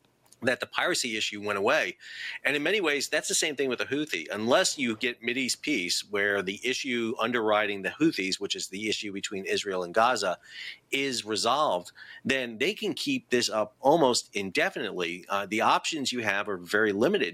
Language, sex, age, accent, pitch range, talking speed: English, male, 40-59, American, 100-130 Hz, 185 wpm